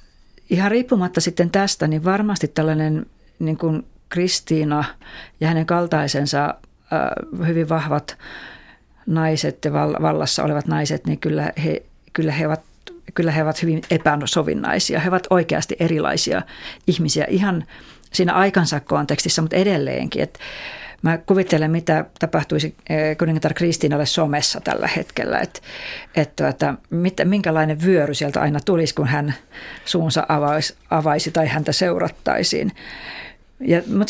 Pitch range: 155-185 Hz